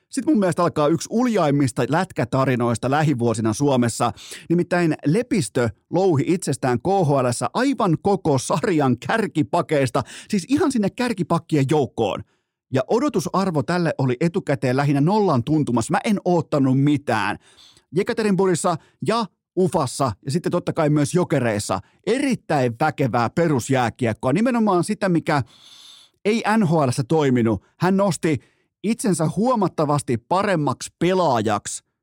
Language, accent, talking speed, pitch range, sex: Finnish, native, 110 wpm, 130-185 Hz, male